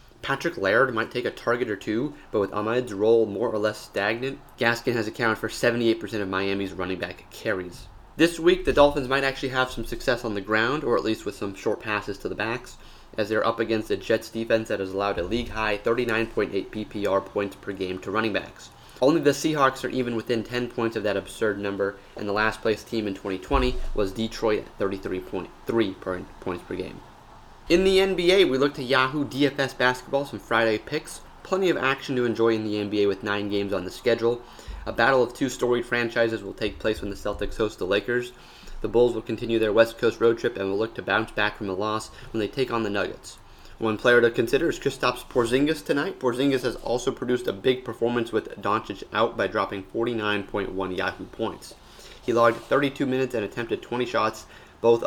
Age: 30-49